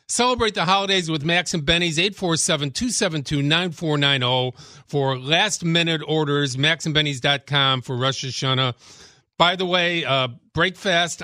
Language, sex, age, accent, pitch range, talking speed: English, male, 50-69, American, 130-165 Hz, 105 wpm